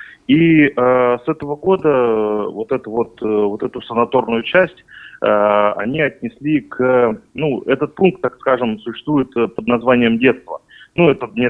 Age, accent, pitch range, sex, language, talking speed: 30-49, native, 115-155 Hz, male, Russian, 150 wpm